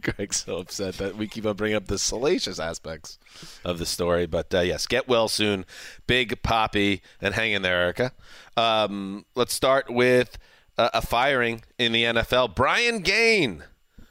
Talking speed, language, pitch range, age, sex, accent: 170 wpm, English, 95-115 Hz, 30-49, male, American